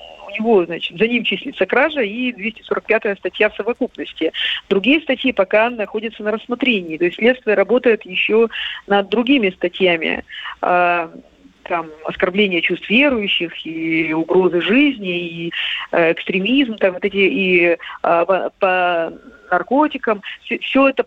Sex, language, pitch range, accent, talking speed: female, Russian, 190-240 Hz, native, 120 wpm